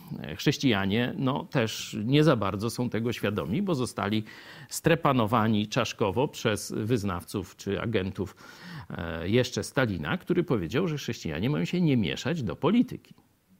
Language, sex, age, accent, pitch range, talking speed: Polish, male, 50-69, native, 105-140 Hz, 125 wpm